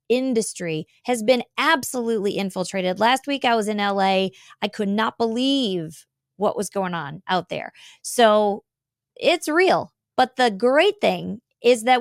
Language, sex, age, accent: English, female, 20-39, American